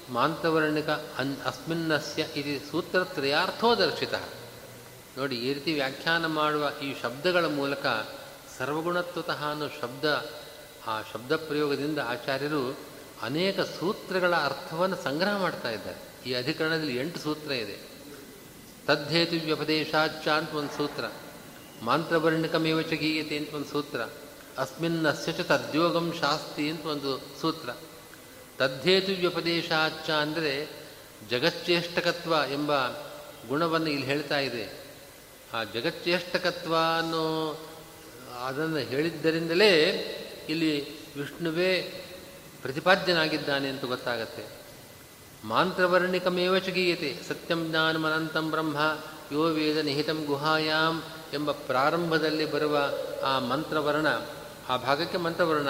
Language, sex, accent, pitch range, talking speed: Kannada, male, native, 145-165 Hz, 85 wpm